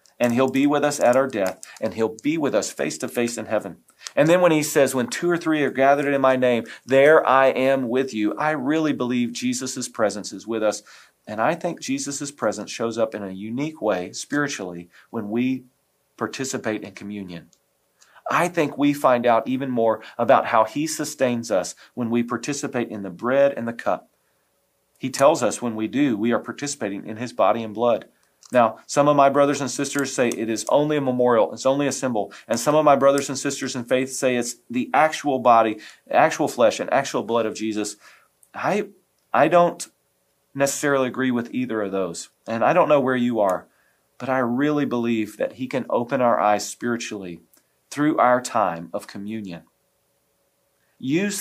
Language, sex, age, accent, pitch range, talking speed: English, male, 40-59, American, 110-140 Hz, 195 wpm